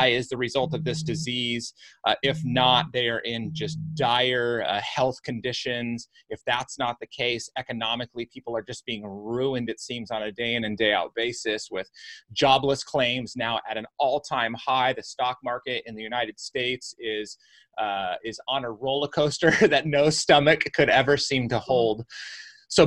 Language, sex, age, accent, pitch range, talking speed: English, male, 30-49, American, 115-145 Hz, 185 wpm